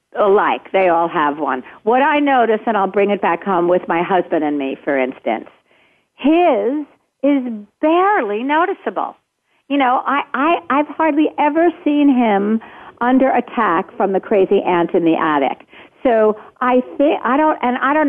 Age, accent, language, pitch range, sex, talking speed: 60-79, American, English, 195-255 Hz, female, 170 wpm